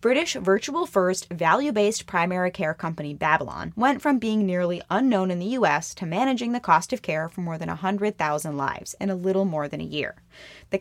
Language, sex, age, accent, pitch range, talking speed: English, female, 20-39, American, 170-210 Hz, 190 wpm